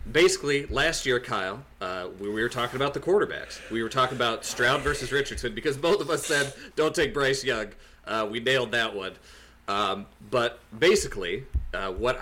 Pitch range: 95-135 Hz